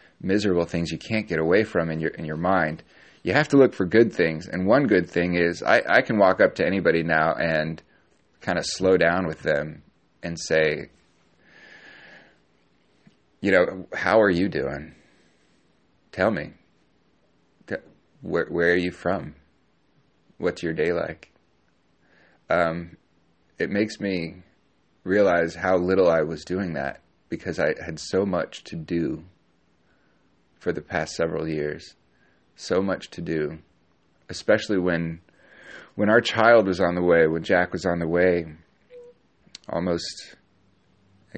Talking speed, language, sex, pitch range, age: 150 wpm, English, male, 80-95 Hz, 30-49